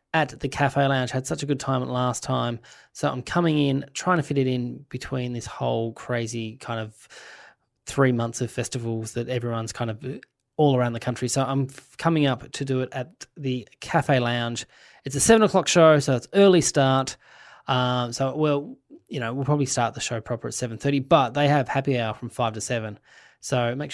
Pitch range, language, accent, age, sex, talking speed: 125-155 Hz, English, Australian, 20-39, male, 210 wpm